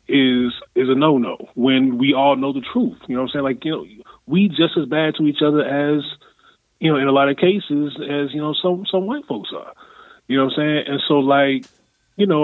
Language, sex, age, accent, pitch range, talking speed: English, male, 20-39, American, 140-185 Hz, 245 wpm